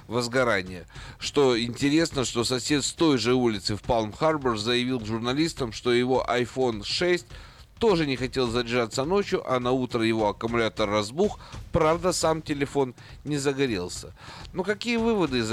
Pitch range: 105-140 Hz